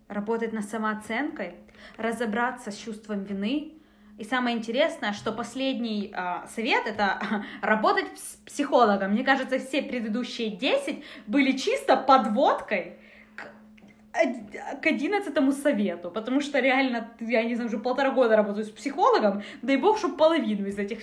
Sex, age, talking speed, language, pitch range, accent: female, 20-39, 140 wpm, Russian, 220-295 Hz, native